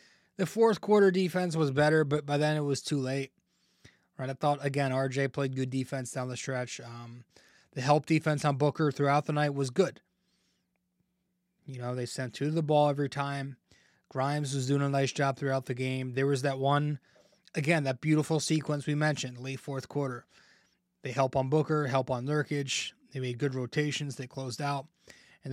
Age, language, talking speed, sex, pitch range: 20-39, English, 195 wpm, male, 130-155 Hz